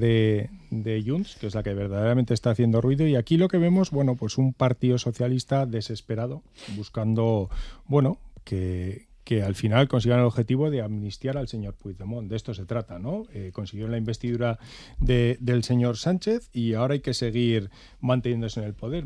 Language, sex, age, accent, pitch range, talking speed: Spanish, male, 40-59, Spanish, 105-135 Hz, 185 wpm